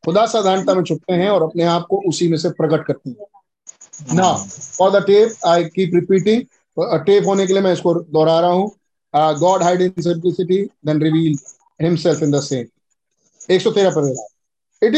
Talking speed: 105 wpm